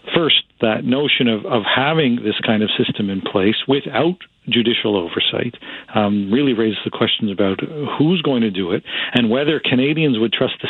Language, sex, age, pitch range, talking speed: English, male, 40-59, 110-135 Hz, 180 wpm